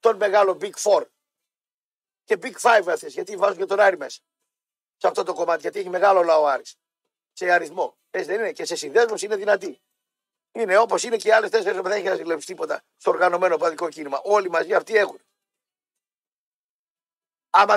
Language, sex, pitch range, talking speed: Greek, male, 195-295 Hz, 180 wpm